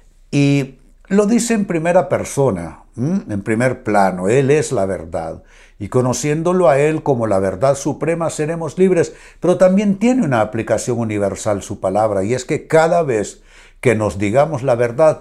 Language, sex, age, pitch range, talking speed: Spanish, male, 60-79, 100-155 Hz, 160 wpm